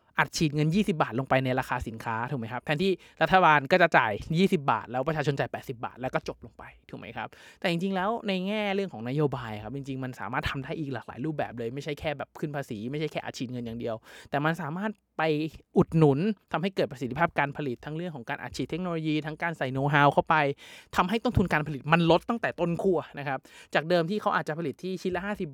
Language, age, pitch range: Thai, 20-39, 140-180 Hz